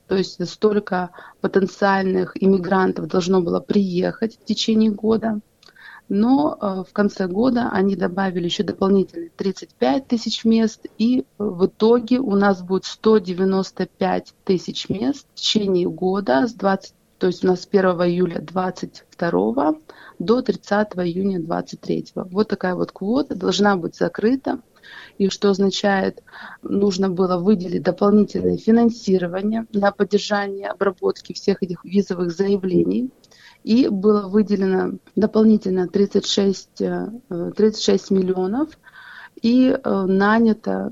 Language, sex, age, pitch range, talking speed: Russian, female, 30-49, 185-220 Hz, 115 wpm